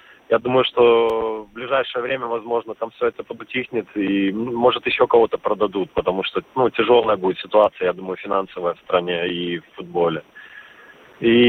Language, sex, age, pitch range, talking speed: Russian, male, 30-49, 110-130 Hz, 160 wpm